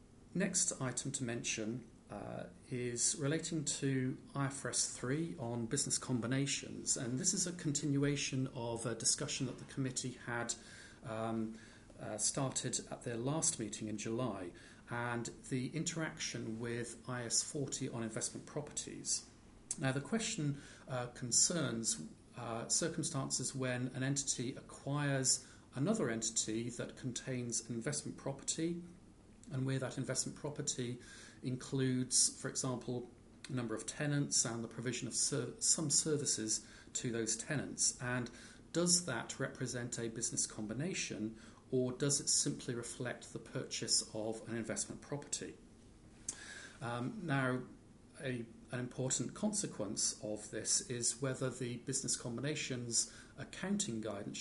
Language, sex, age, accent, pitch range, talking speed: English, male, 40-59, British, 115-140 Hz, 125 wpm